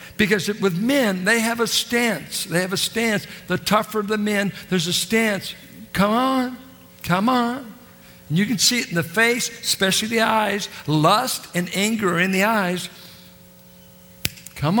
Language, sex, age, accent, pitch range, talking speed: English, male, 60-79, American, 175-240 Hz, 165 wpm